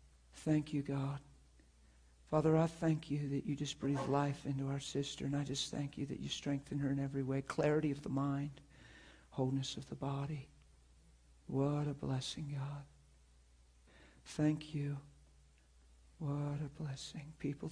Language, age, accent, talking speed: English, 60-79, American, 150 wpm